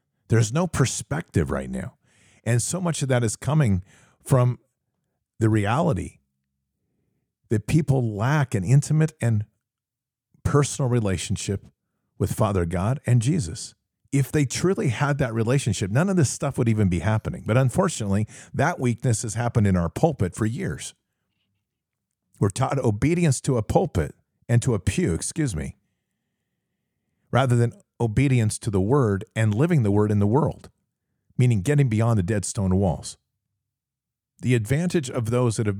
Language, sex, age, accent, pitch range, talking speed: English, male, 50-69, American, 100-135 Hz, 155 wpm